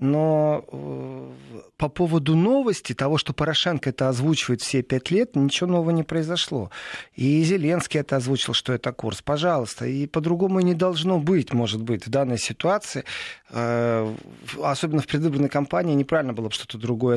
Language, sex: Russian, male